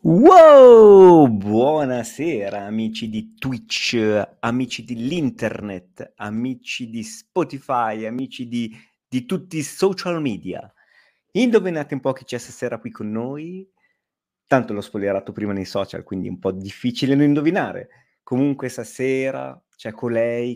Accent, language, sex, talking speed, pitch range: native, Italian, male, 125 wpm, 110-135 Hz